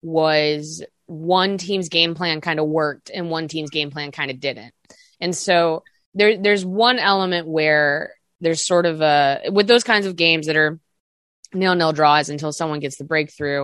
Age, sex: 20-39, female